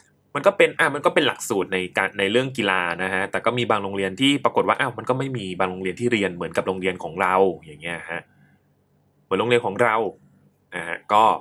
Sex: male